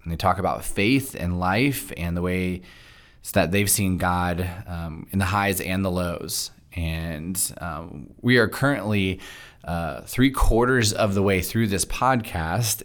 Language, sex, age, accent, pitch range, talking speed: English, male, 20-39, American, 90-105 Hz, 165 wpm